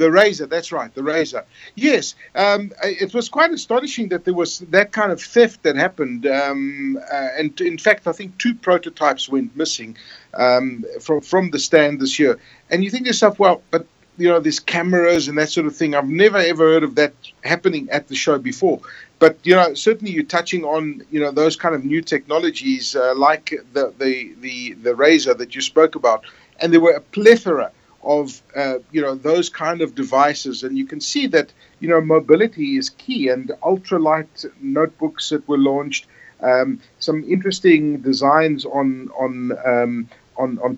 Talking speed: 190 wpm